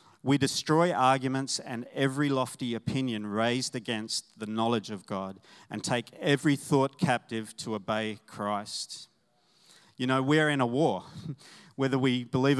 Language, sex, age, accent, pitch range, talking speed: English, male, 40-59, Australian, 115-145 Hz, 145 wpm